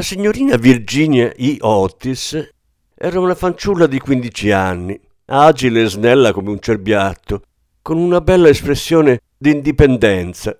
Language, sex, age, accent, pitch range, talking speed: Italian, male, 50-69, native, 100-155 Hz, 130 wpm